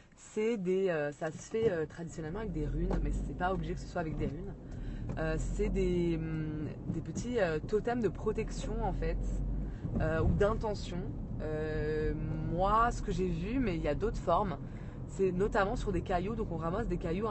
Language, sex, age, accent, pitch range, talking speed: French, female, 20-39, French, 150-185 Hz, 200 wpm